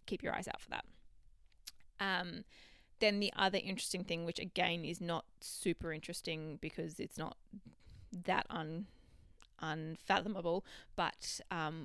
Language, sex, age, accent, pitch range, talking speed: English, female, 20-39, Australian, 160-190 Hz, 125 wpm